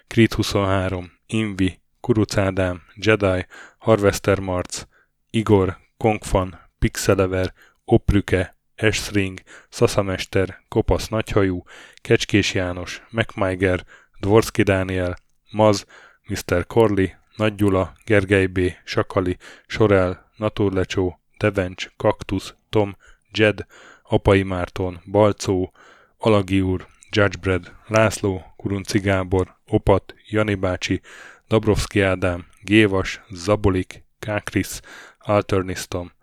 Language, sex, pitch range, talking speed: Hungarian, male, 95-105 Hz, 80 wpm